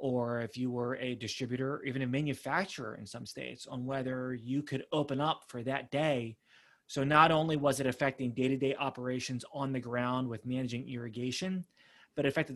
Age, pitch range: 30-49, 125-155 Hz